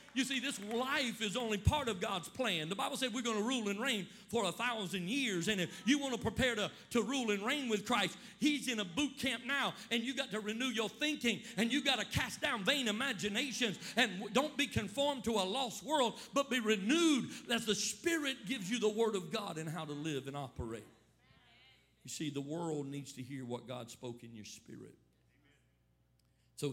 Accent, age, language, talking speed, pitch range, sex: American, 50-69, English, 220 wpm, 135-225 Hz, male